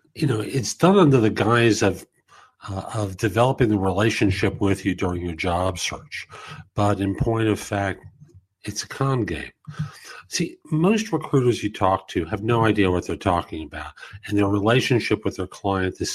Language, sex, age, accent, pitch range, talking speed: English, male, 50-69, American, 90-120 Hz, 180 wpm